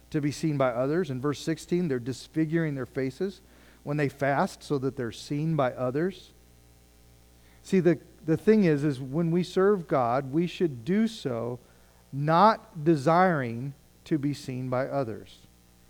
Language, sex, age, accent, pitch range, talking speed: English, male, 40-59, American, 115-175 Hz, 160 wpm